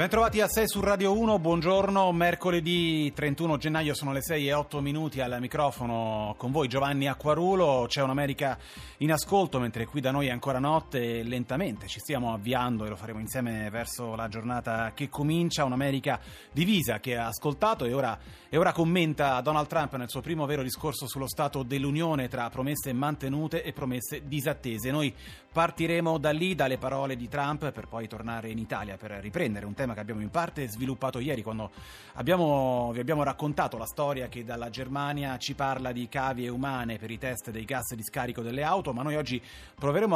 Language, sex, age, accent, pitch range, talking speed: Italian, male, 30-49, native, 120-155 Hz, 185 wpm